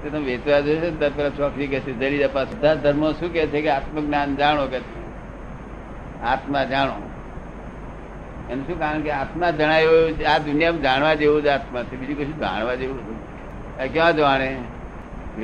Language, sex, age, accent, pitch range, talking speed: Gujarati, male, 60-79, native, 125-145 Hz, 45 wpm